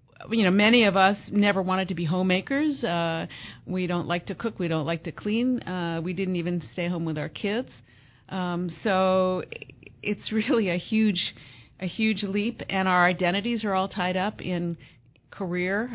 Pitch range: 160-200 Hz